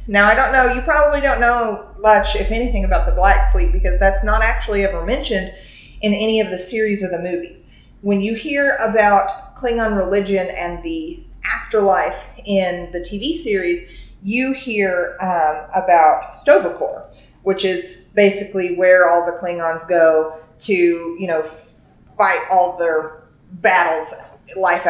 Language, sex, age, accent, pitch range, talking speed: English, female, 30-49, American, 185-235 Hz, 150 wpm